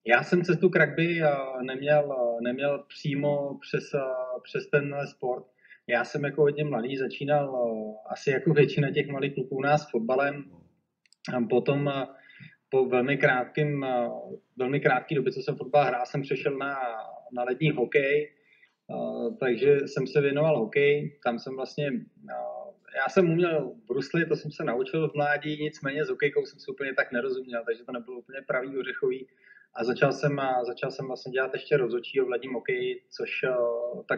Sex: male